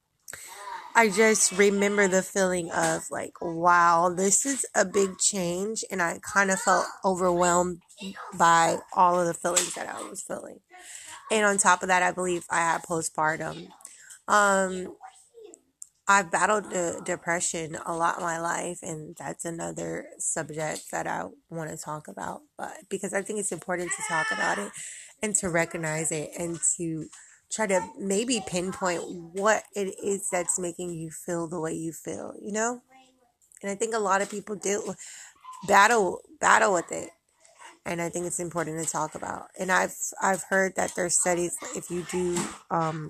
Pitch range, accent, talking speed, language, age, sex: 165-195 Hz, American, 170 wpm, English, 20-39, female